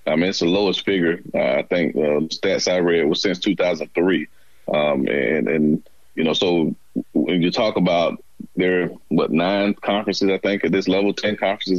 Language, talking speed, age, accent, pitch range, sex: English, 195 wpm, 30-49, American, 85-100 Hz, male